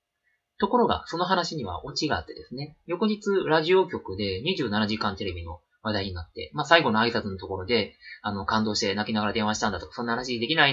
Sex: male